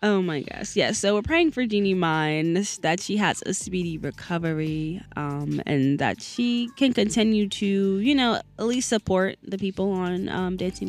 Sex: female